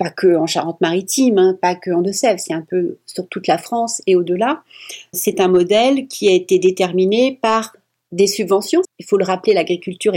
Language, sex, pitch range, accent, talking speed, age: French, female, 185-230 Hz, French, 190 wpm, 40-59